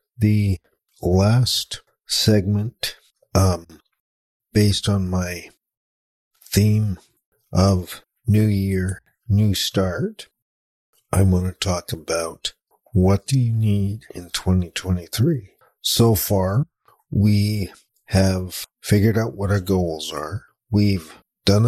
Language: English